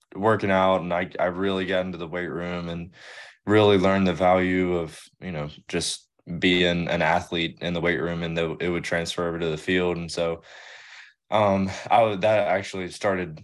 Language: English